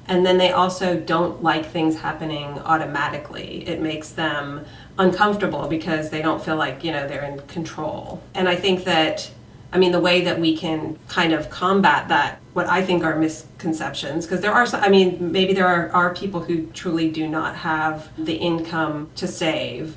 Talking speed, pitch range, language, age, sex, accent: 190 wpm, 155-175 Hz, English, 30-49, female, American